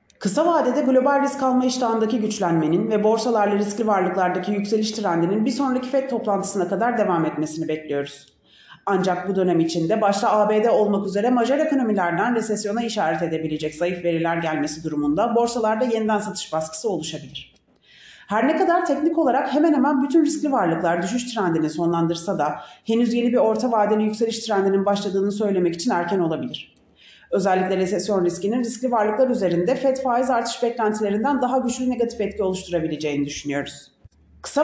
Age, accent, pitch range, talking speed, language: 30-49, native, 175-245 Hz, 150 wpm, Turkish